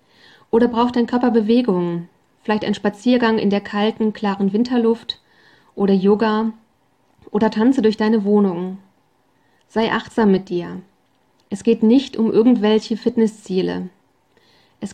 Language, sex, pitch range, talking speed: German, female, 195-230 Hz, 125 wpm